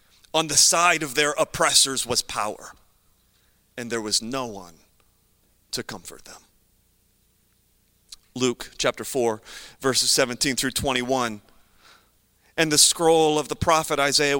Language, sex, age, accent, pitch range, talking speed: English, male, 30-49, American, 145-200 Hz, 125 wpm